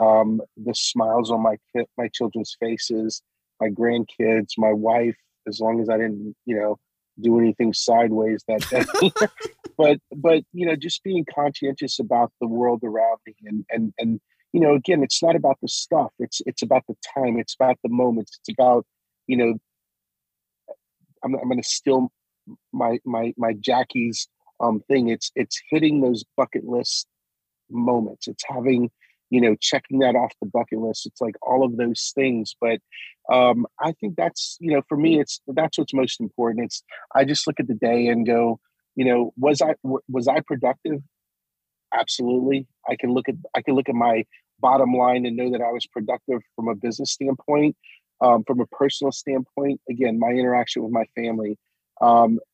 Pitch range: 115-135 Hz